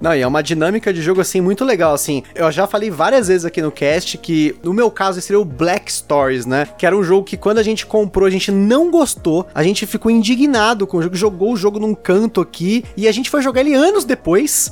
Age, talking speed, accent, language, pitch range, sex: 20-39, 255 wpm, Brazilian, Portuguese, 170-235 Hz, male